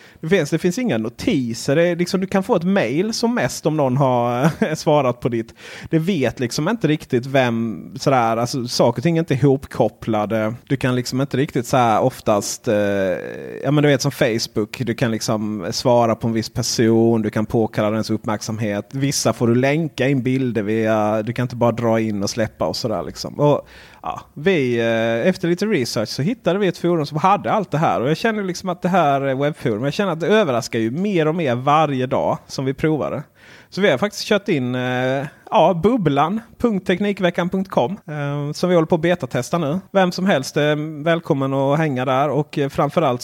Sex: male